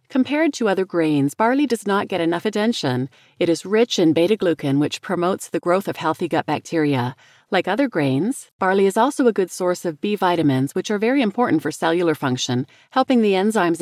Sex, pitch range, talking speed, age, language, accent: female, 155-210 Hz, 195 wpm, 40-59, English, American